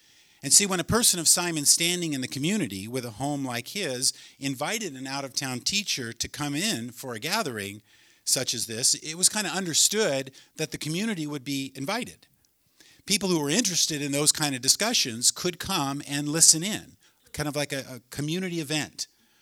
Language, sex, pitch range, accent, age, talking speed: English, male, 125-165 Hz, American, 50-69, 190 wpm